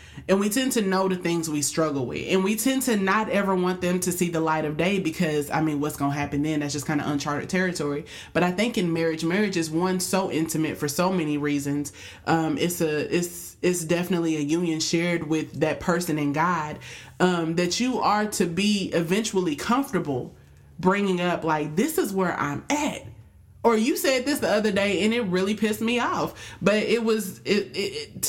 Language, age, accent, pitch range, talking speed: English, 20-39, American, 160-200 Hz, 215 wpm